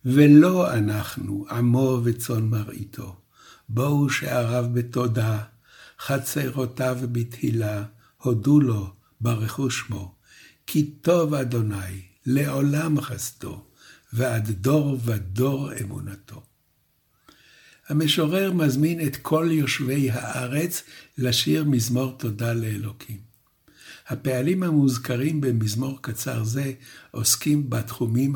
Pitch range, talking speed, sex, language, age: 110-140 Hz, 85 wpm, male, Hebrew, 60-79